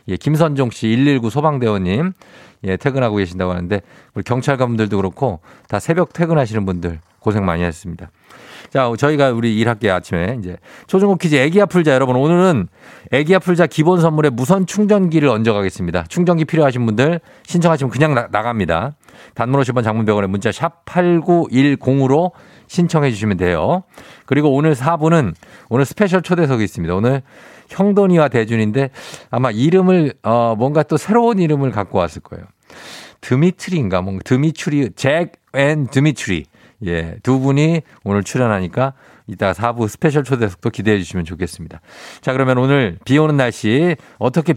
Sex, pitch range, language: male, 110-160 Hz, Korean